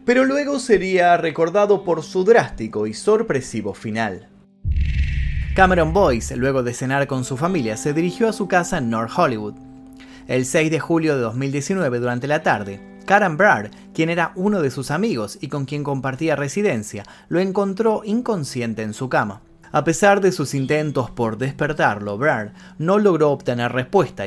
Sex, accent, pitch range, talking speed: male, Argentinian, 120-185 Hz, 165 wpm